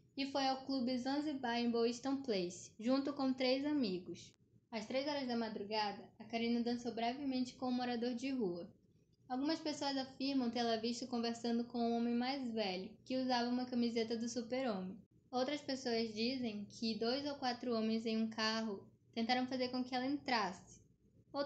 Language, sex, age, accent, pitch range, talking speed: Portuguese, female, 10-29, Brazilian, 220-255 Hz, 170 wpm